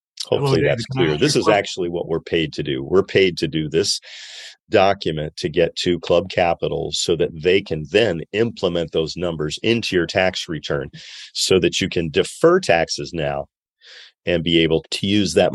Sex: male